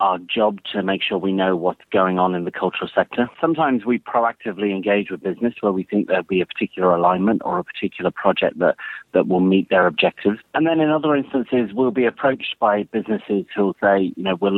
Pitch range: 90-110 Hz